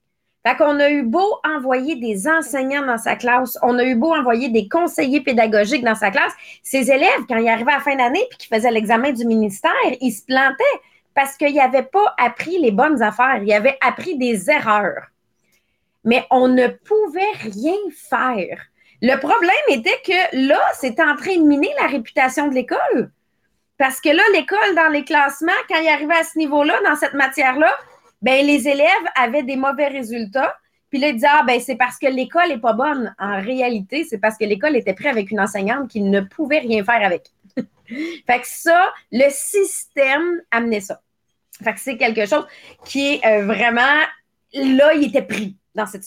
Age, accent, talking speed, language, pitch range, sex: 30-49, Canadian, 190 wpm, English, 235-310 Hz, female